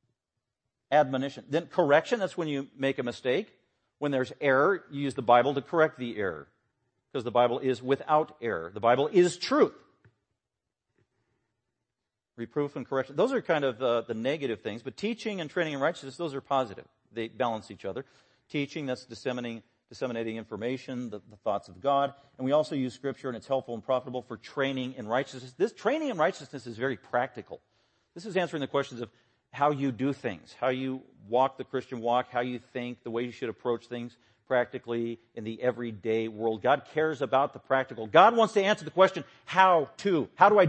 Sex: male